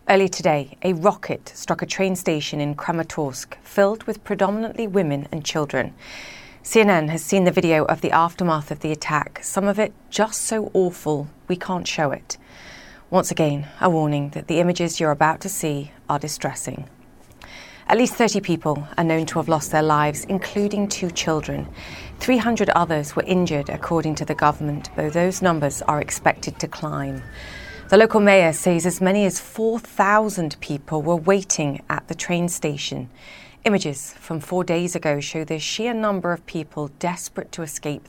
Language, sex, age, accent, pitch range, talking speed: English, female, 30-49, British, 150-195 Hz, 170 wpm